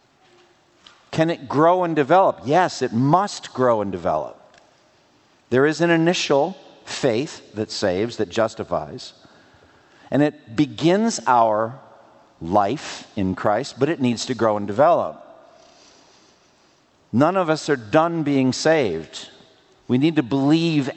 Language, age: English, 50-69